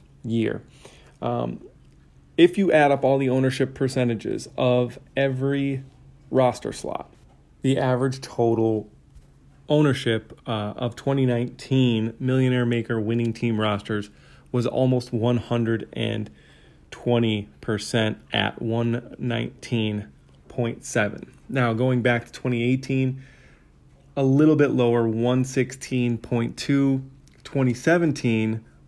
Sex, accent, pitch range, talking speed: male, American, 110-135 Hz, 85 wpm